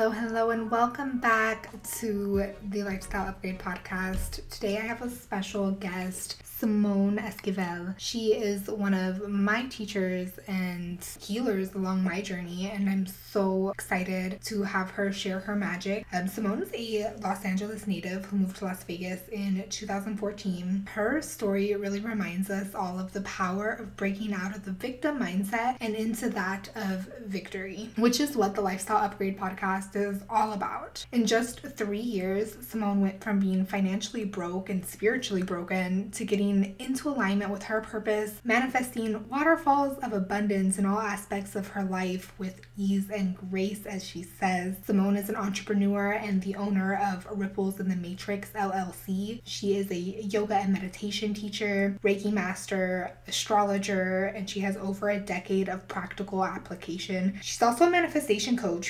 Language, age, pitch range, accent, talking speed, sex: English, 10-29, 190-215 Hz, American, 160 wpm, female